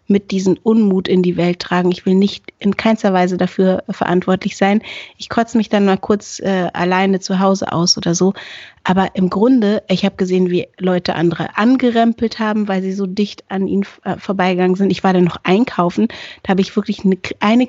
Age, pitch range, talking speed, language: 30-49, 185-230 Hz, 195 wpm, German